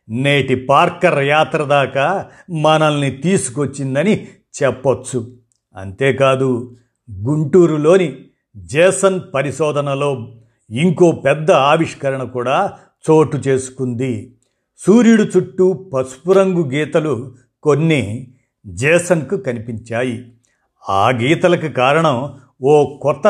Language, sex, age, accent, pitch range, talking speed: Telugu, male, 50-69, native, 120-160 Hz, 75 wpm